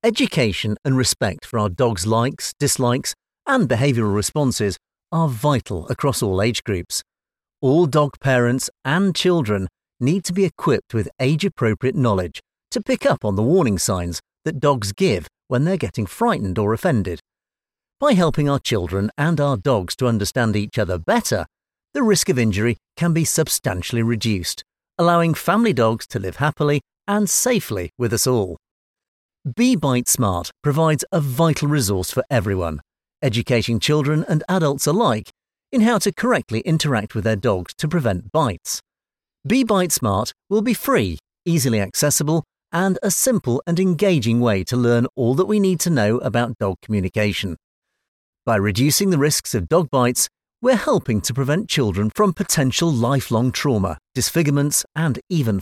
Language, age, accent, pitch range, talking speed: English, 50-69, British, 110-165 Hz, 155 wpm